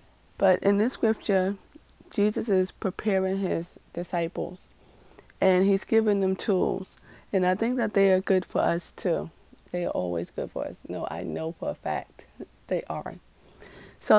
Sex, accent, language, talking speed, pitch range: female, American, English, 165 wpm, 175-205 Hz